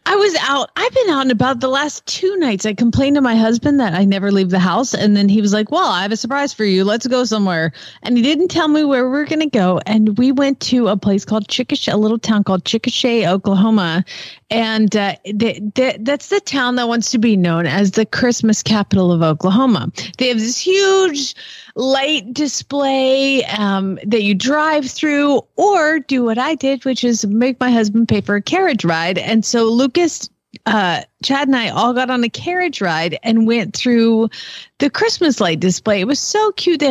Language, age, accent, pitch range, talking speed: English, 30-49, American, 210-295 Hz, 210 wpm